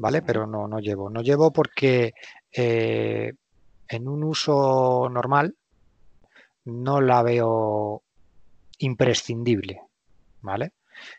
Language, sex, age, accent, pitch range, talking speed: Spanish, male, 30-49, Spanish, 115-140 Hz, 95 wpm